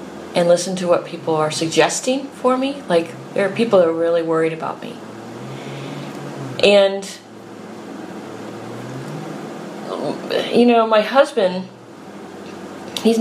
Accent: American